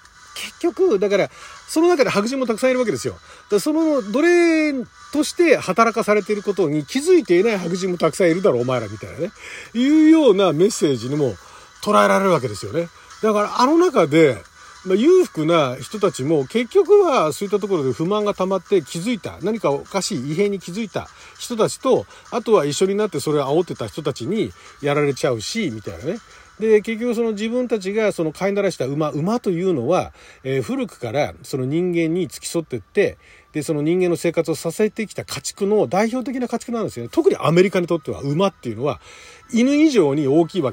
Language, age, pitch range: Japanese, 40-59, 160-270 Hz